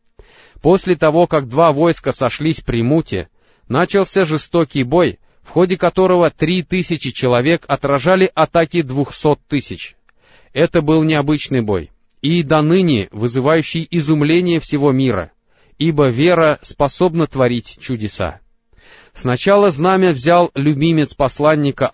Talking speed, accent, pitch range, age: 115 wpm, native, 130-165 Hz, 30-49